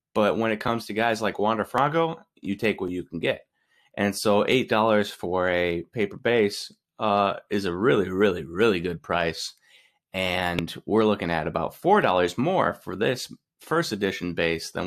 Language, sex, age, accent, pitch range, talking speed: English, male, 30-49, American, 90-120 Hz, 175 wpm